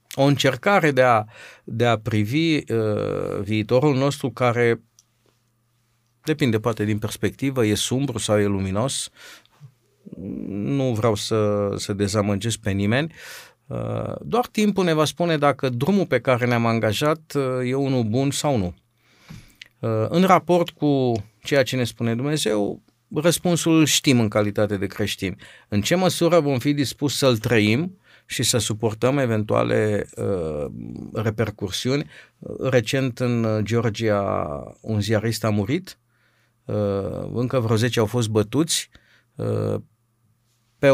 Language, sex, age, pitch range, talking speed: Romanian, male, 50-69, 110-135 Hz, 130 wpm